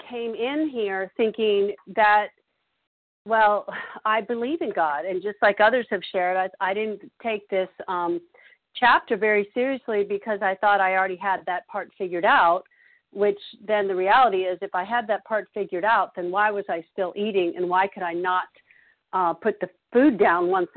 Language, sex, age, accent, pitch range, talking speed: English, female, 50-69, American, 185-225 Hz, 185 wpm